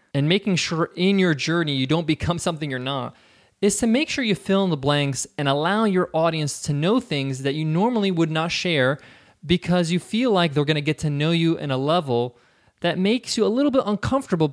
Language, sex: English, male